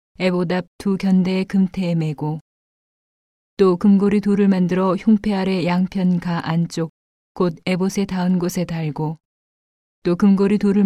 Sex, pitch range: female, 170-195 Hz